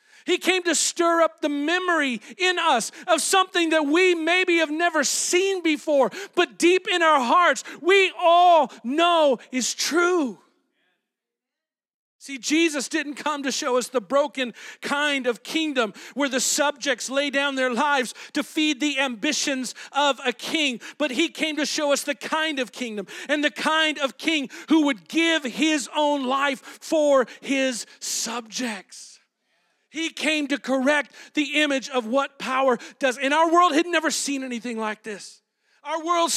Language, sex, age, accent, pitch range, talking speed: English, male, 50-69, American, 265-330 Hz, 165 wpm